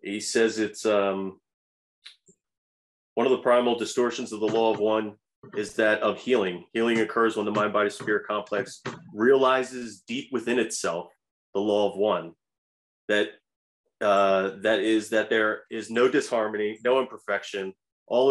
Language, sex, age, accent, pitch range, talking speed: English, male, 30-49, American, 105-125 Hz, 145 wpm